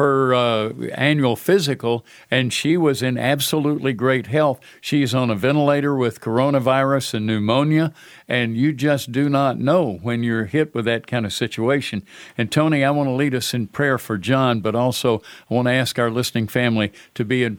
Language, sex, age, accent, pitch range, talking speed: English, male, 60-79, American, 115-140 Hz, 190 wpm